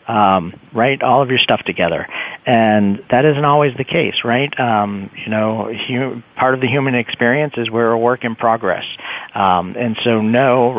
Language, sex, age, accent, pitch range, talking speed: English, male, 40-59, American, 105-130 Hz, 180 wpm